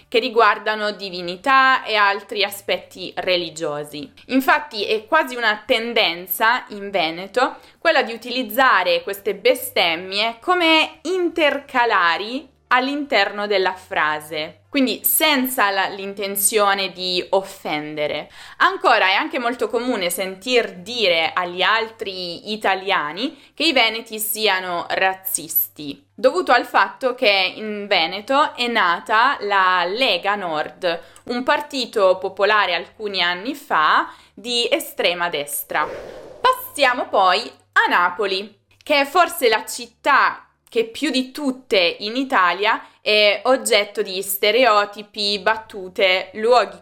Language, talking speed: Italian, 110 wpm